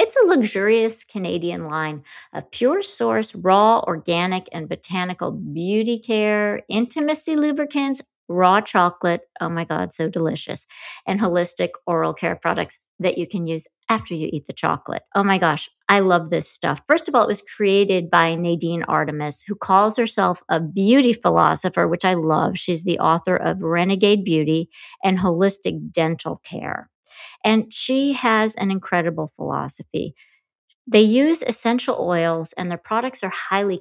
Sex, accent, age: female, American, 50-69